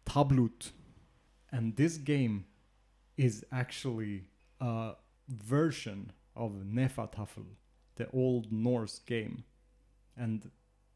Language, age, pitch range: English, 30-49, 110-130 Hz